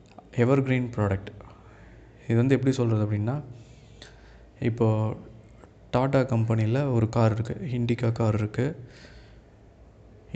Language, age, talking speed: Tamil, 20-39, 95 wpm